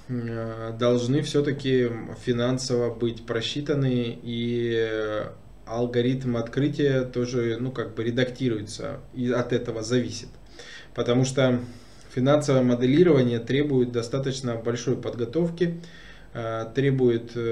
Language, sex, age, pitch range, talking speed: Russian, male, 20-39, 115-130 Hz, 80 wpm